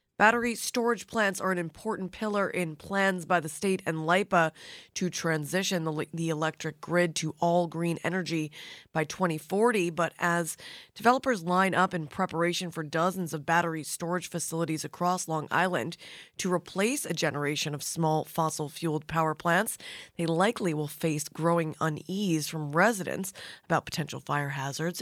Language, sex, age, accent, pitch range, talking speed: English, female, 20-39, American, 155-180 Hz, 150 wpm